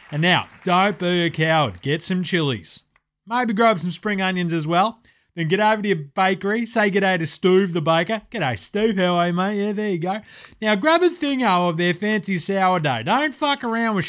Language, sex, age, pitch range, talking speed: English, male, 30-49, 175-220 Hz, 215 wpm